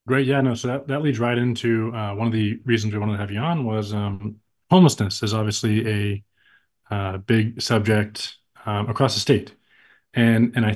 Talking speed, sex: 200 wpm, male